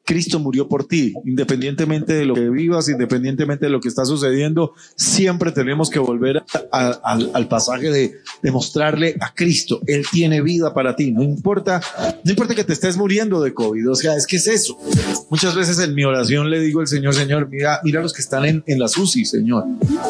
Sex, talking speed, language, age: male, 210 wpm, Spanish, 30-49